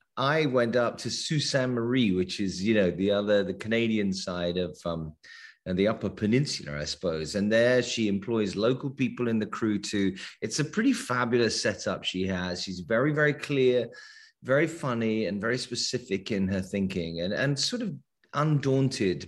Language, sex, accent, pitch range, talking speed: English, male, British, 95-125 Hz, 175 wpm